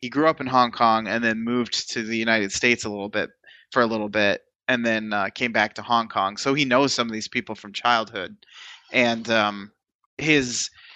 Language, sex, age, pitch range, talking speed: English, male, 20-39, 110-130 Hz, 220 wpm